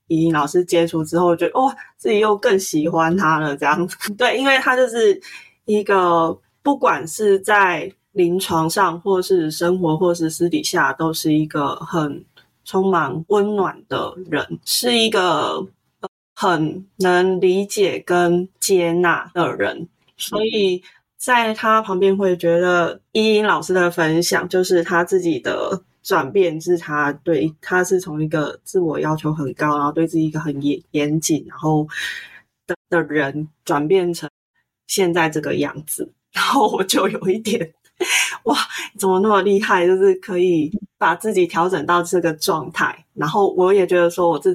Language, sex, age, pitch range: Chinese, female, 20-39, 160-195 Hz